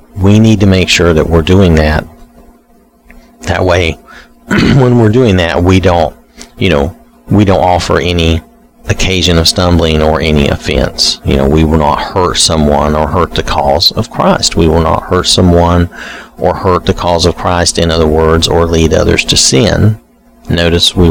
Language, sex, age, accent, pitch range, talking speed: English, male, 40-59, American, 80-105 Hz, 180 wpm